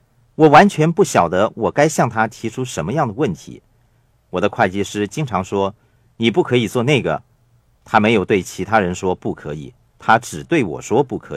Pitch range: 100-130 Hz